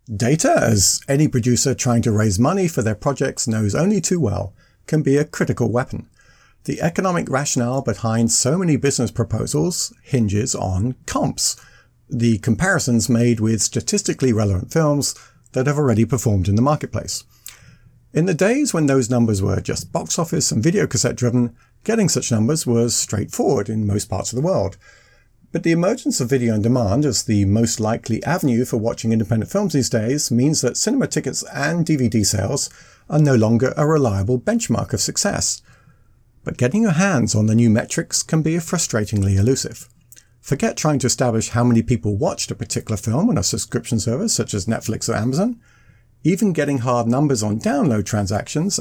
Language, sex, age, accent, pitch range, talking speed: English, male, 50-69, British, 110-145 Hz, 175 wpm